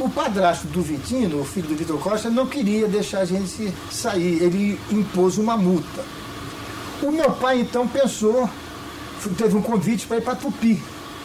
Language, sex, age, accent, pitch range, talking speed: English, male, 60-79, Brazilian, 175-235 Hz, 165 wpm